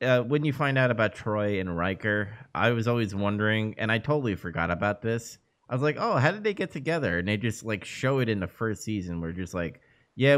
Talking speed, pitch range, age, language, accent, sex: 245 wpm, 100-140 Hz, 30-49, English, American, male